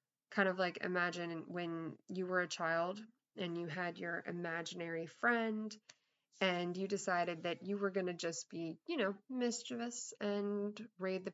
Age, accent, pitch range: 20-39, American, 175-215 Hz